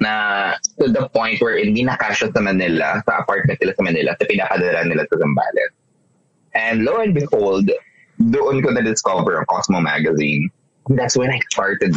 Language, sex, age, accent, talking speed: Filipino, male, 20-39, native, 170 wpm